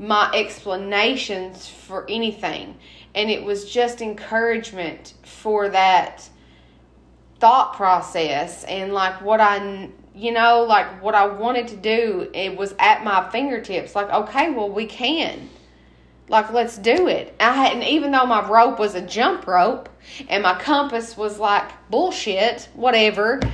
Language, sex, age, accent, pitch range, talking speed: English, female, 20-39, American, 190-235 Hz, 145 wpm